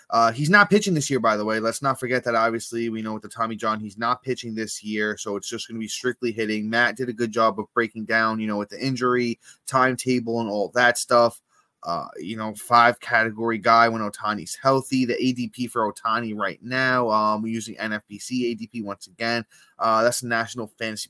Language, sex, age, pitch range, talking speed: English, male, 20-39, 105-125 Hz, 220 wpm